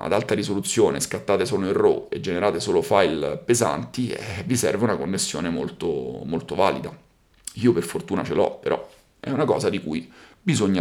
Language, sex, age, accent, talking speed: Italian, male, 40-59, native, 180 wpm